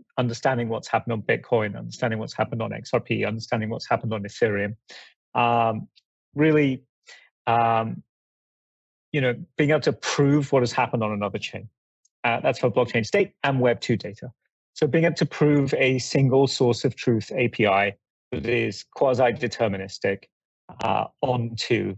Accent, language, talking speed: British, English, 145 wpm